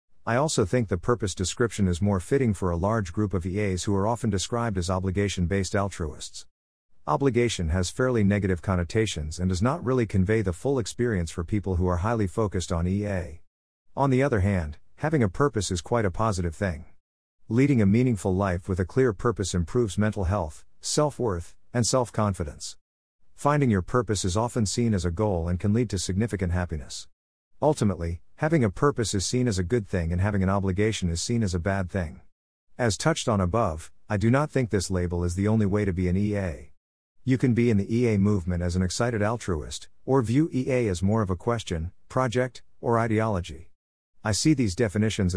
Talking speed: 195 wpm